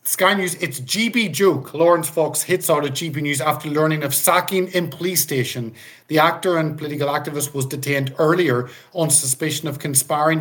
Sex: male